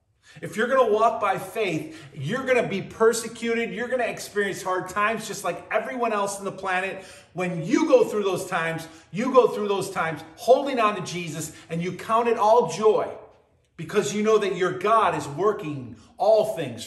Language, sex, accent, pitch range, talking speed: English, male, American, 150-215 Hz, 200 wpm